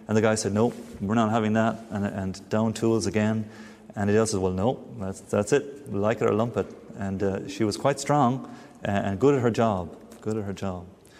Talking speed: 240 wpm